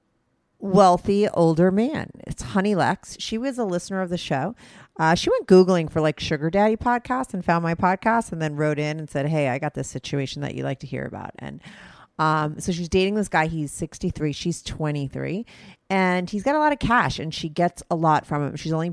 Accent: American